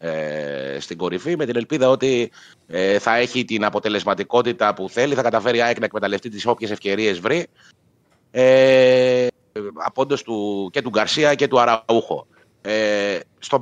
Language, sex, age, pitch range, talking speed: Greek, male, 30-49, 105-140 Hz, 155 wpm